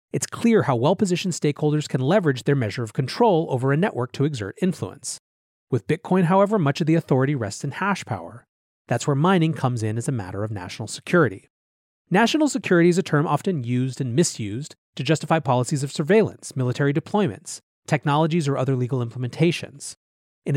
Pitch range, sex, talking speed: 125-175 Hz, male, 180 wpm